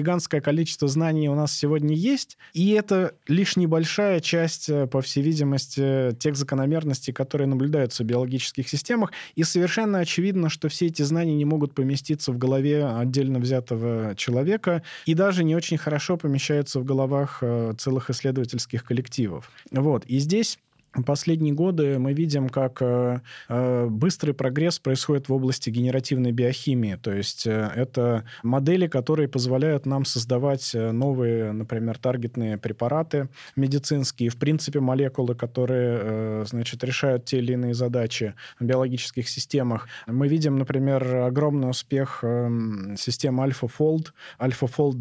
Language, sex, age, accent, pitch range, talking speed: Russian, male, 20-39, native, 125-150 Hz, 130 wpm